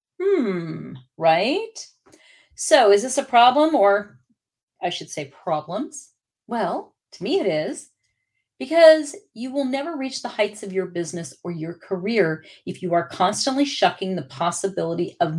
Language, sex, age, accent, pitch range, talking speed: English, female, 40-59, American, 175-225 Hz, 150 wpm